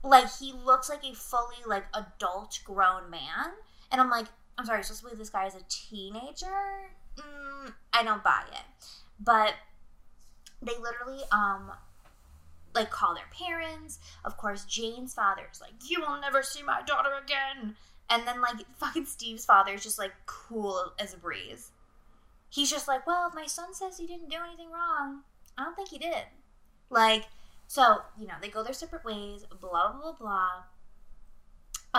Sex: female